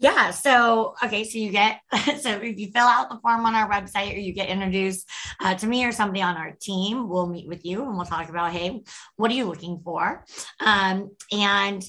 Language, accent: English, American